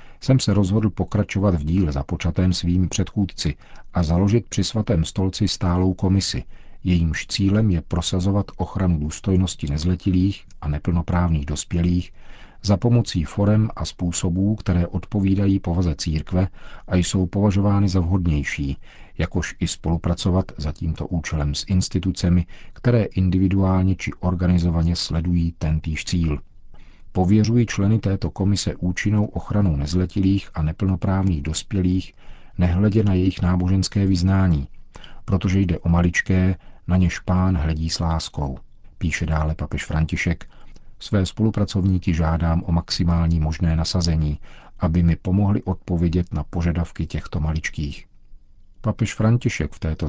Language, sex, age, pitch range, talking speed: Czech, male, 50-69, 85-95 Hz, 125 wpm